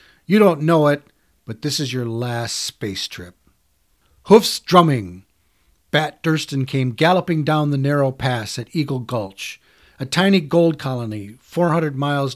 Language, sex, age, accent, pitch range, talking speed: English, male, 50-69, American, 115-155 Hz, 145 wpm